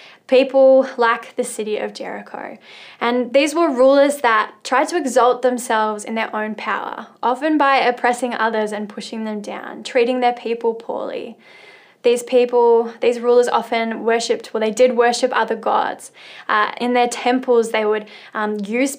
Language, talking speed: English, 160 wpm